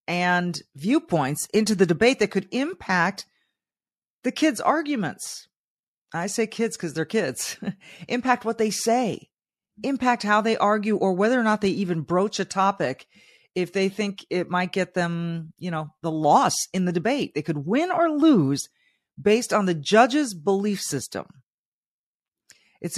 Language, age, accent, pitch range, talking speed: English, 40-59, American, 145-205 Hz, 155 wpm